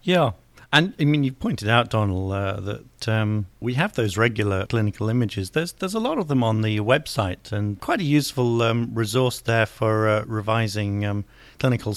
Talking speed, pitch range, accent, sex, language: 190 wpm, 110-135 Hz, British, male, English